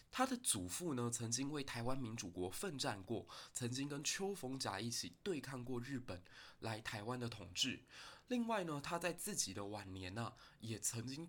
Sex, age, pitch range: male, 20-39, 110-140 Hz